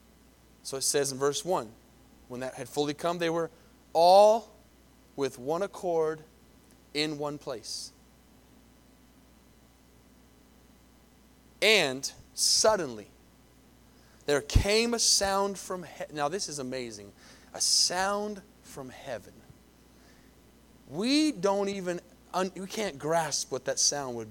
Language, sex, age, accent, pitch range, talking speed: English, male, 30-49, American, 145-210 Hz, 115 wpm